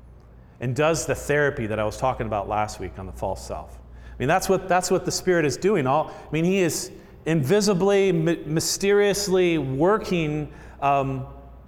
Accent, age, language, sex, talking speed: American, 40-59, English, male, 180 wpm